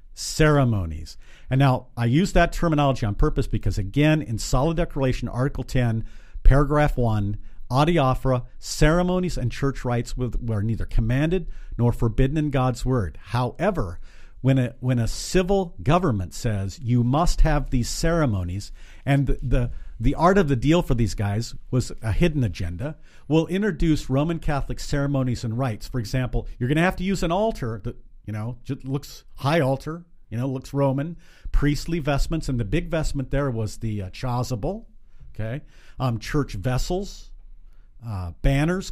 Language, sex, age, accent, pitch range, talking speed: English, male, 50-69, American, 115-155 Hz, 160 wpm